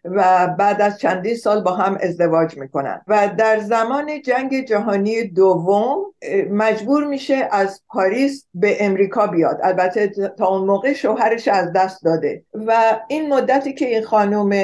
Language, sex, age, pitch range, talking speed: Persian, female, 50-69, 195-255 Hz, 150 wpm